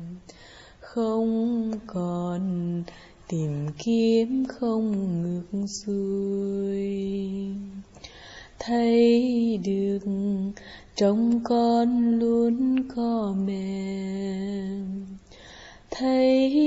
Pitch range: 195-260 Hz